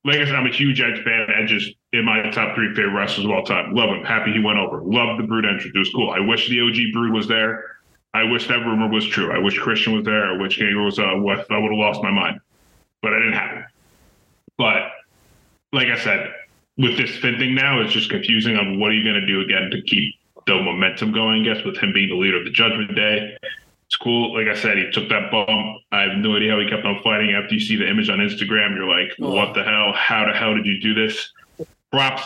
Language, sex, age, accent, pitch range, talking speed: English, male, 20-39, American, 105-115 Hz, 255 wpm